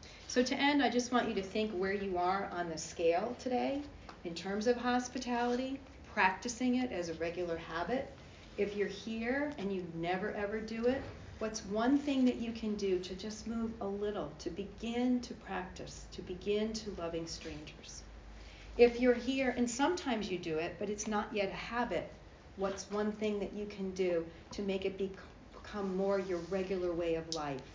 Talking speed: 190 wpm